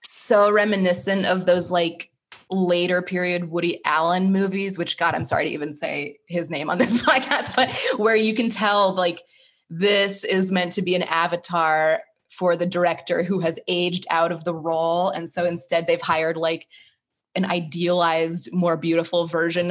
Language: English